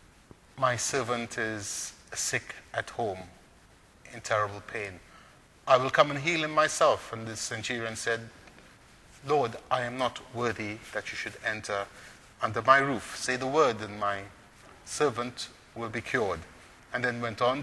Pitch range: 105-125 Hz